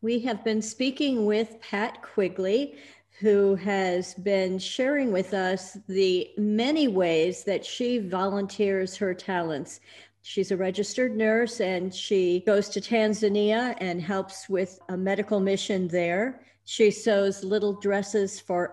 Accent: American